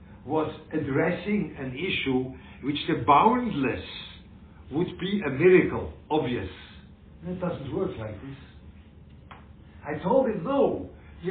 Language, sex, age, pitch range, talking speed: English, male, 60-79, 125-180 Hz, 120 wpm